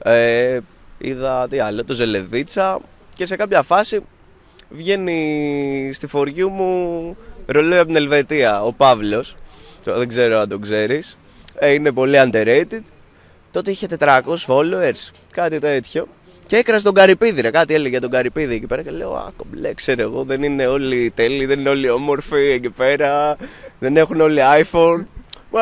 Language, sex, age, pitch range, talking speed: Greek, male, 20-39, 120-160 Hz, 150 wpm